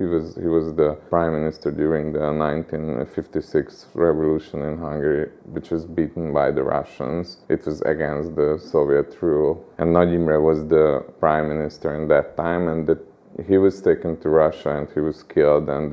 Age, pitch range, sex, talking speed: 30-49, 75-85 Hz, male, 175 wpm